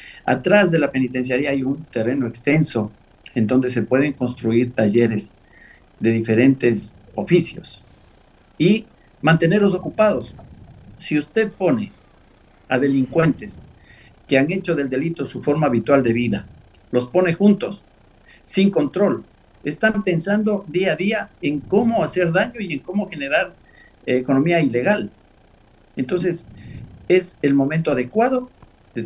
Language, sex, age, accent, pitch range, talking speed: Spanish, male, 50-69, Mexican, 125-185 Hz, 130 wpm